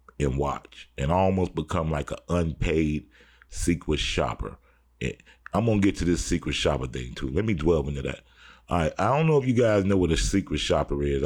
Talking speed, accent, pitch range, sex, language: 220 wpm, American, 70-90 Hz, male, English